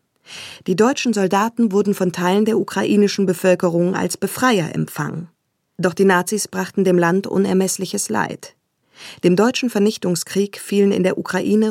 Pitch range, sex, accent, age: 175-205 Hz, female, German, 20-39